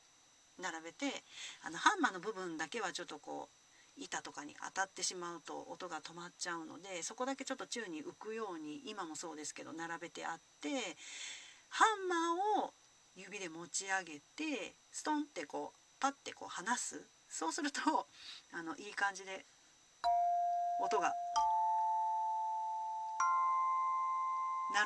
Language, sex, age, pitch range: Japanese, female, 40-59, 170-275 Hz